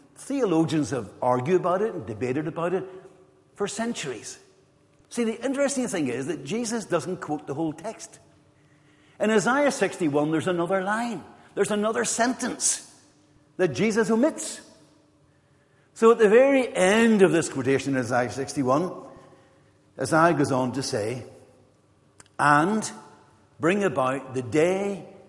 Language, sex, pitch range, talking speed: English, male, 145-215 Hz, 135 wpm